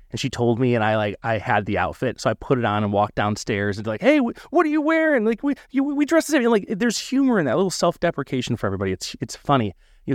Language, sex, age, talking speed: English, male, 30-49, 285 wpm